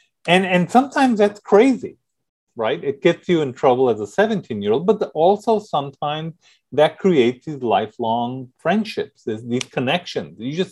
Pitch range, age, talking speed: 135-205 Hz, 40-59, 150 wpm